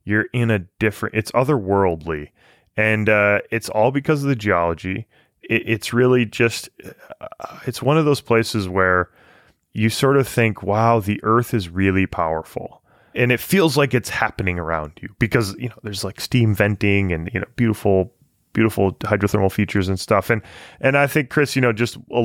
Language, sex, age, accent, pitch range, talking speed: English, male, 20-39, American, 95-120 Hz, 180 wpm